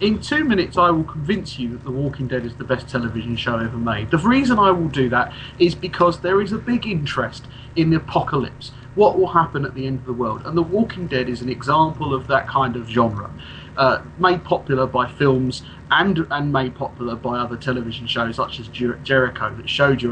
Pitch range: 125-165 Hz